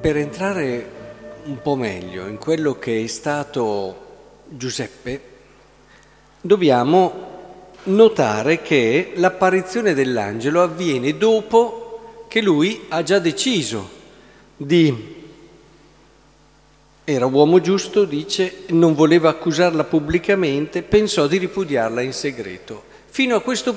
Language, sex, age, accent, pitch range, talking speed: Italian, male, 50-69, native, 145-195 Hz, 100 wpm